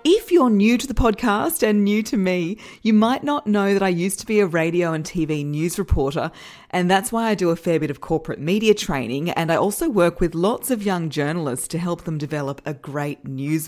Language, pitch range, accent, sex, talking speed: English, 160-225 Hz, Australian, female, 235 wpm